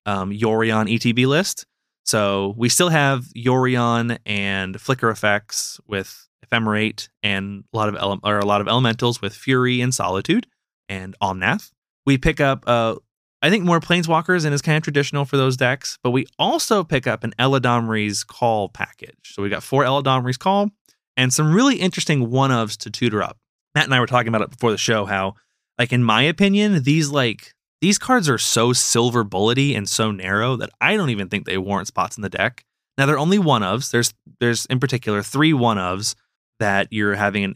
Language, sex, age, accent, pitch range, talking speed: English, male, 20-39, American, 105-140 Hz, 190 wpm